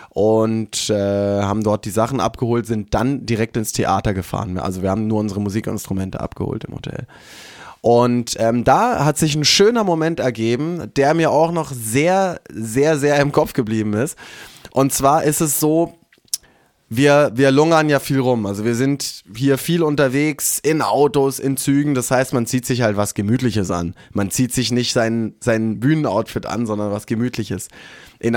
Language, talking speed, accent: German, 180 wpm, German